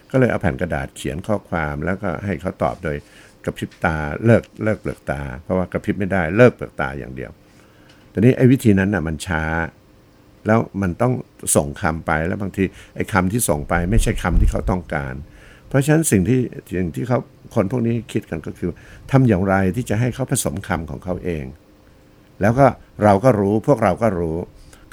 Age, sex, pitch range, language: 60-79, male, 85-110 Hz, Thai